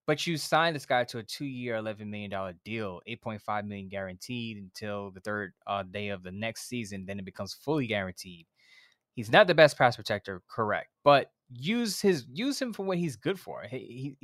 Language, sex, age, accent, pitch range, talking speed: English, male, 20-39, American, 115-155 Hz, 200 wpm